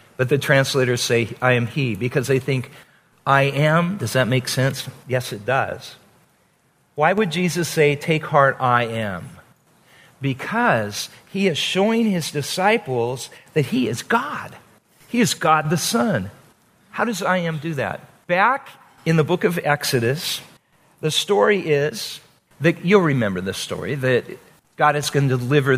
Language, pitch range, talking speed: English, 130-185 Hz, 160 wpm